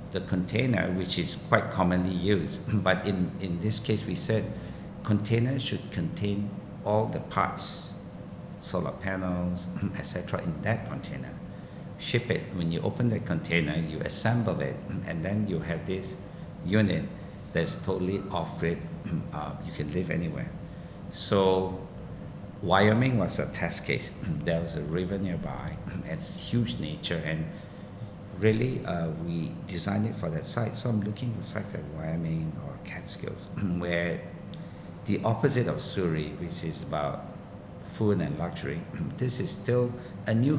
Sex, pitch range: male, 90-110 Hz